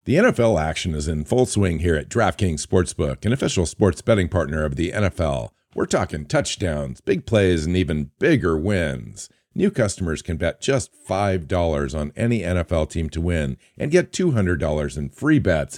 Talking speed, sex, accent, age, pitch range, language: 175 wpm, male, American, 50-69, 80-105 Hz, English